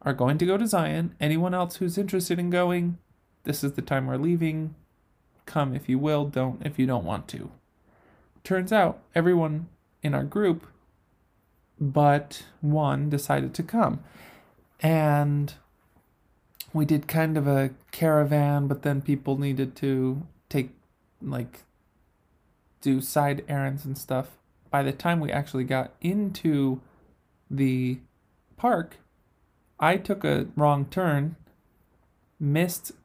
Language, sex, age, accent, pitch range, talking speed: English, male, 20-39, American, 130-155 Hz, 135 wpm